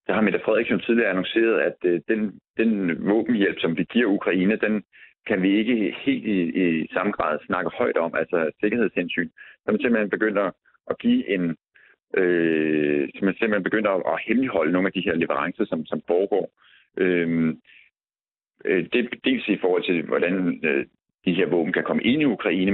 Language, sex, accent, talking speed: Danish, male, native, 165 wpm